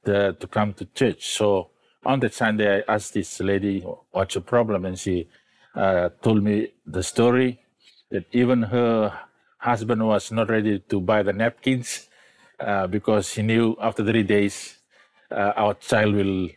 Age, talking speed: 50-69, 165 wpm